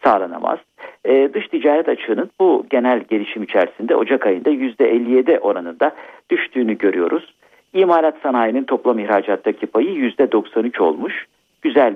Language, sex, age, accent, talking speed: Turkish, male, 50-69, native, 115 wpm